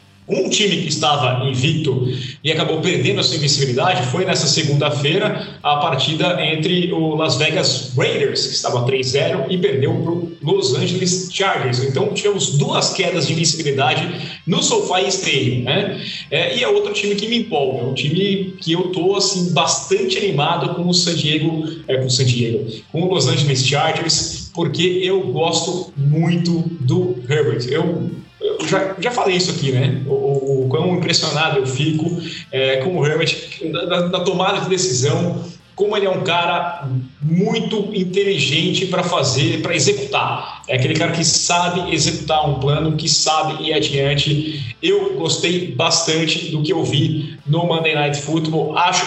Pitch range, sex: 145-180 Hz, male